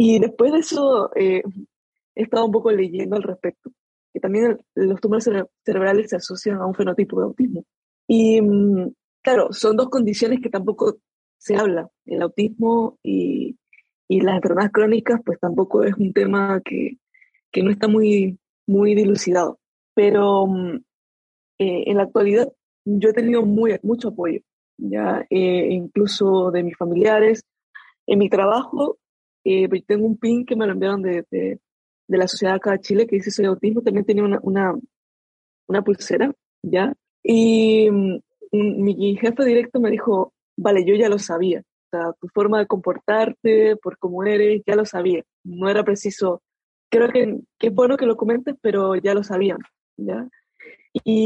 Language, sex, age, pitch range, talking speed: Spanish, female, 20-39, 190-230 Hz, 165 wpm